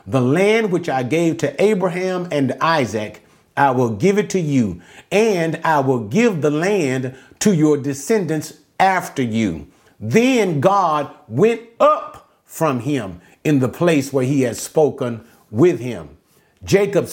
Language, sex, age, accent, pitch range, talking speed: English, male, 40-59, American, 130-185 Hz, 145 wpm